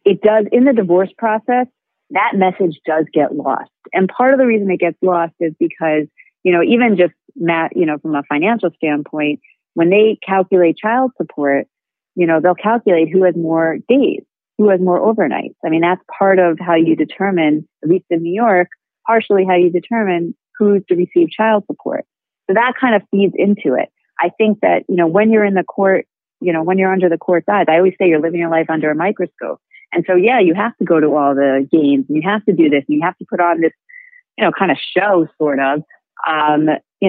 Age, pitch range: 30-49, 155-205 Hz